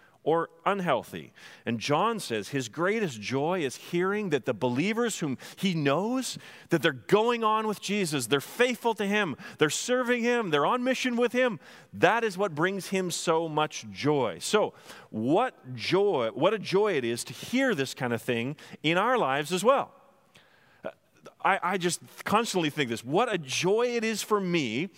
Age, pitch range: 40-59, 145-195 Hz